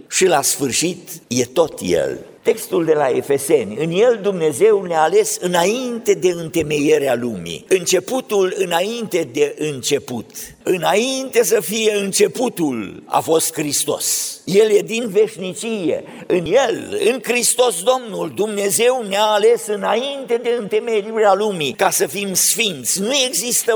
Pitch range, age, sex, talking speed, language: 175-250 Hz, 50-69, male, 130 wpm, Romanian